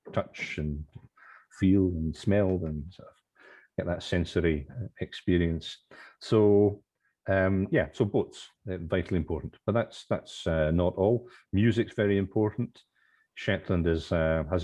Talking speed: 125 wpm